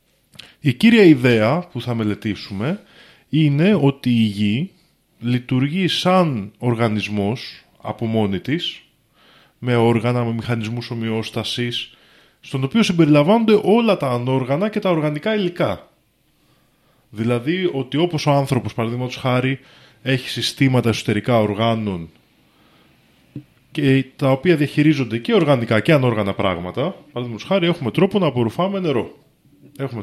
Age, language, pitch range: 20-39, Greek, 115-170 Hz